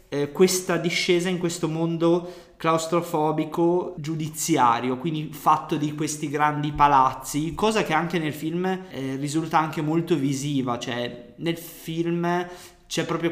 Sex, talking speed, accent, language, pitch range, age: male, 130 wpm, native, Italian, 140-175 Hz, 20-39